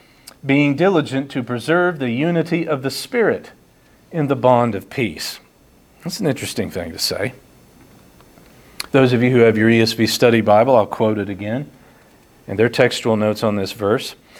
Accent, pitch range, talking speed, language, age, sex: American, 115-150 Hz, 165 wpm, English, 40-59, male